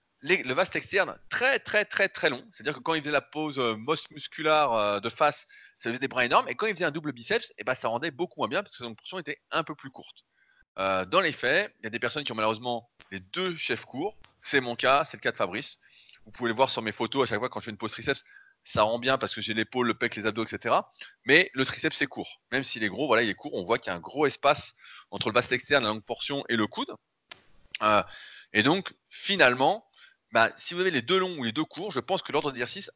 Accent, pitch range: French, 115-150 Hz